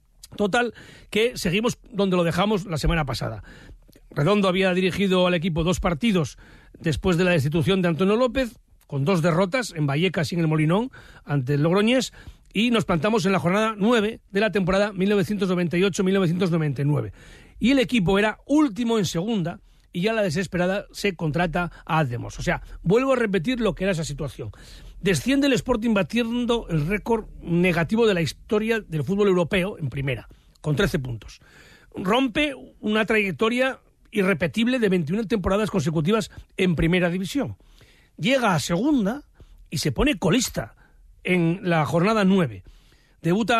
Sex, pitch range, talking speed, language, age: male, 170-220 Hz, 155 wpm, Spanish, 40-59